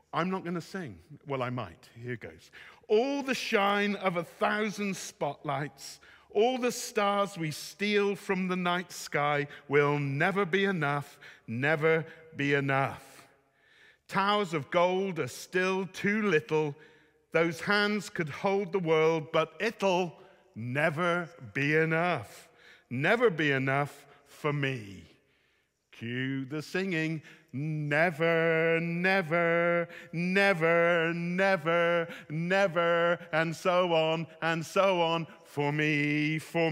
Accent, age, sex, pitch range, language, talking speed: British, 50-69, male, 145-185 Hz, English, 120 wpm